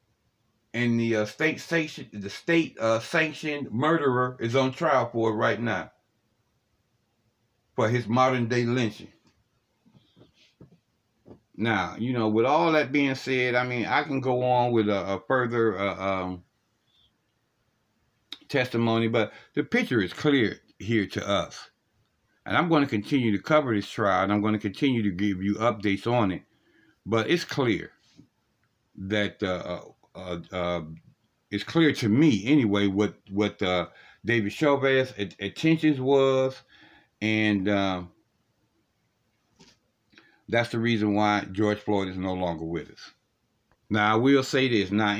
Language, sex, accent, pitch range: English, male, American, 100-125 Hz